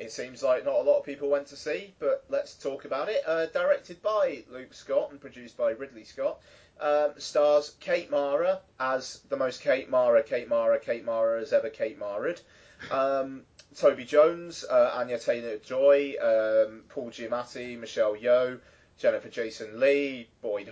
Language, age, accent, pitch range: English, 30-49, British, 115-150 Hz